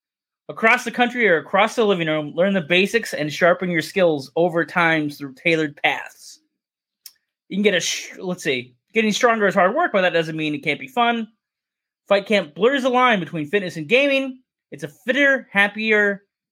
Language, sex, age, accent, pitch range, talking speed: English, male, 20-39, American, 155-205 Hz, 190 wpm